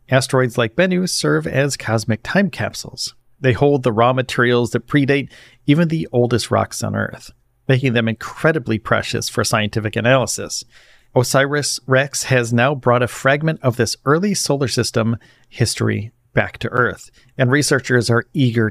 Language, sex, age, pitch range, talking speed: English, male, 40-59, 115-140 Hz, 150 wpm